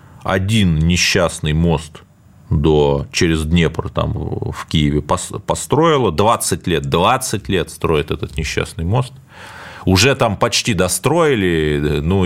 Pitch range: 85-110 Hz